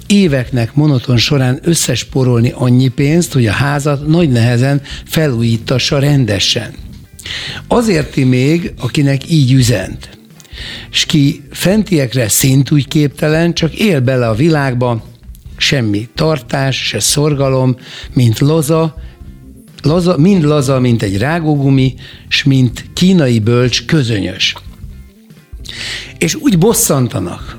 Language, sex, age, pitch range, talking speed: Hungarian, male, 60-79, 120-155 Hz, 105 wpm